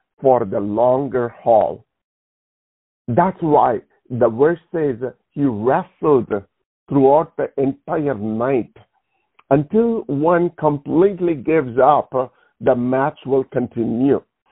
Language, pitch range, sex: English, 135-180 Hz, male